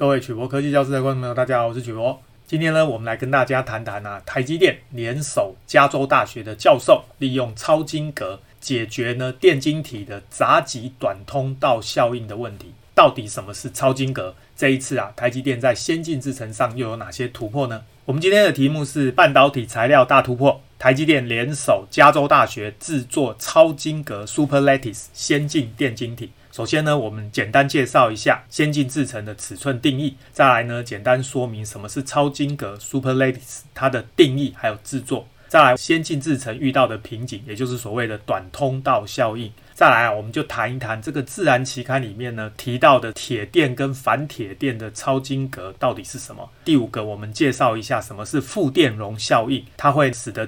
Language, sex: Chinese, male